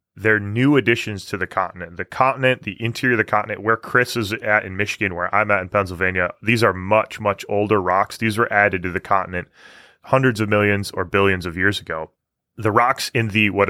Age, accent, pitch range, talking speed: 20-39, American, 100-120 Hz, 215 wpm